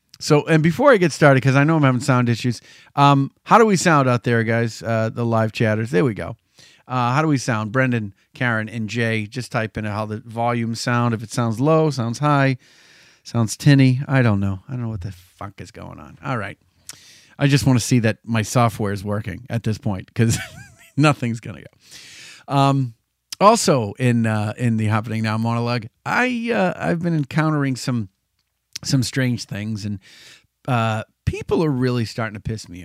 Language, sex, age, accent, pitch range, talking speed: English, male, 40-59, American, 110-140 Hz, 205 wpm